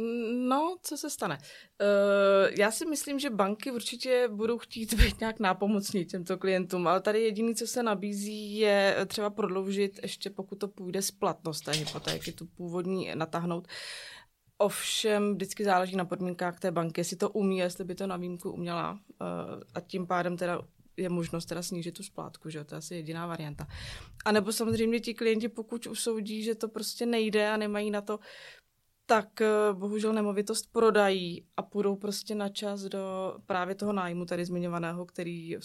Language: Czech